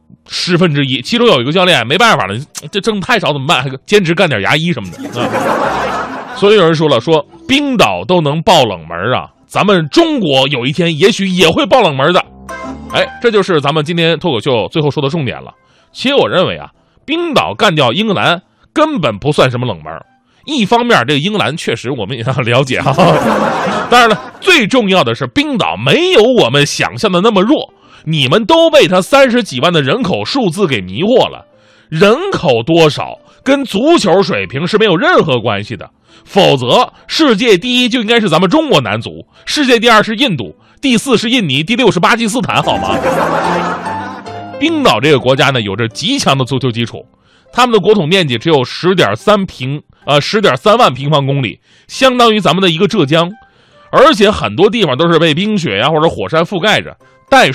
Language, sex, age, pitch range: Chinese, male, 30-49, 145-235 Hz